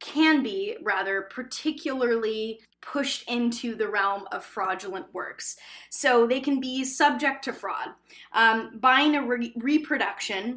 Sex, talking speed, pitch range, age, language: female, 125 wpm, 200-260 Hz, 10-29, English